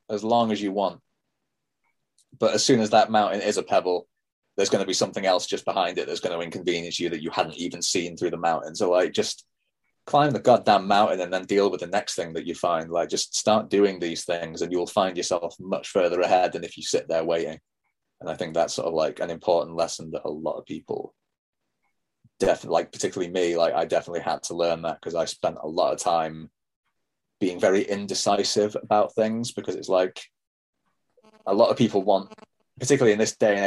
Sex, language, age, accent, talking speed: male, English, 30-49, British, 220 wpm